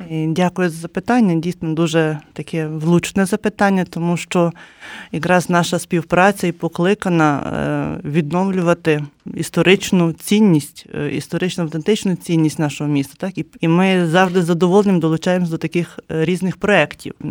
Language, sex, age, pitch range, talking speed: Ukrainian, male, 30-49, 165-195 Hz, 120 wpm